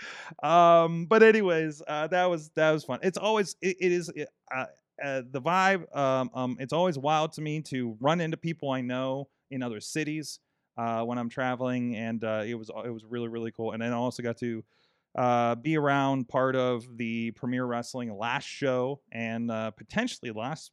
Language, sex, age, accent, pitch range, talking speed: English, male, 30-49, American, 115-145 Hz, 195 wpm